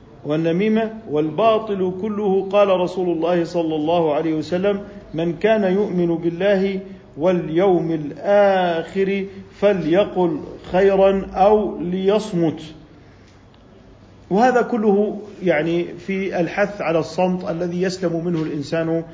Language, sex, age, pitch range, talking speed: Arabic, male, 50-69, 140-200 Hz, 95 wpm